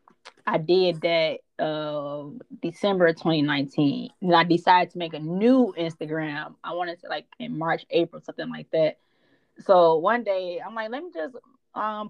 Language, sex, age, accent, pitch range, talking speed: English, female, 20-39, American, 165-210 Hz, 170 wpm